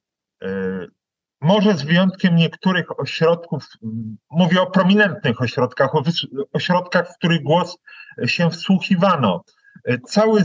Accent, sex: native, male